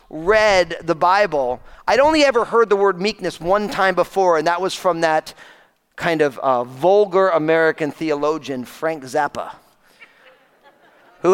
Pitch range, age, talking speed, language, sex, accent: 135-195 Hz, 40-59, 145 wpm, English, male, American